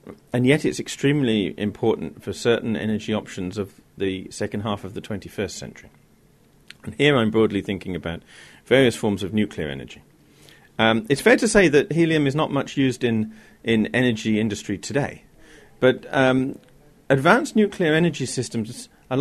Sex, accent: male, British